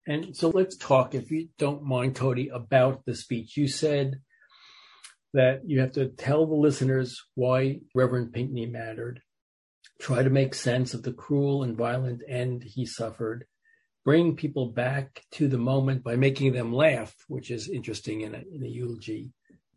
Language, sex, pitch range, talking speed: English, male, 125-150 Hz, 165 wpm